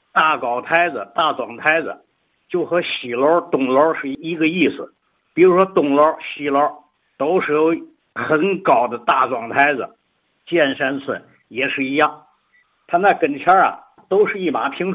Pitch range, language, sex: 150-200 Hz, Chinese, male